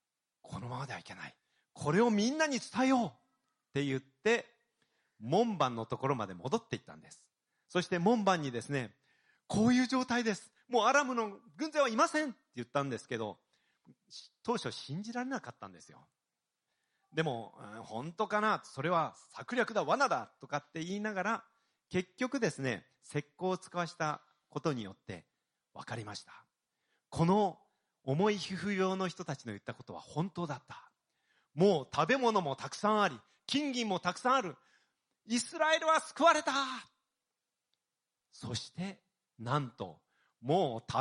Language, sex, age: Japanese, male, 40-59